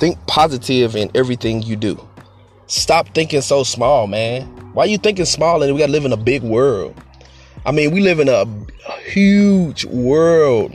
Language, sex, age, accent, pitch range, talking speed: English, male, 20-39, American, 100-130 Hz, 190 wpm